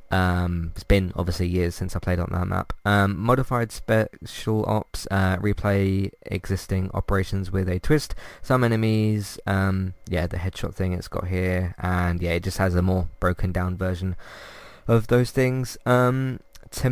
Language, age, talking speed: English, 20-39, 165 wpm